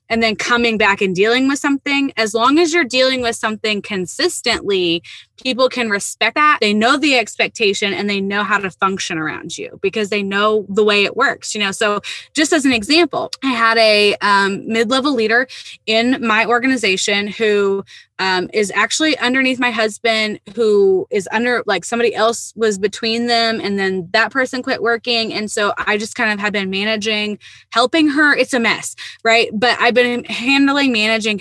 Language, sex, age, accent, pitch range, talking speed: English, female, 20-39, American, 210-260 Hz, 185 wpm